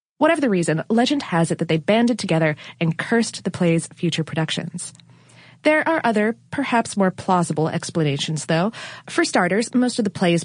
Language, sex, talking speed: English, female, 170 wpm